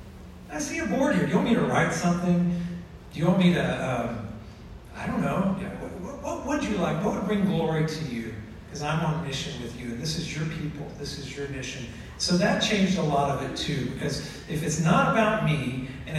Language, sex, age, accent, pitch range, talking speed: English, male, 40-59, American, 140-180 Hz, 240 wpm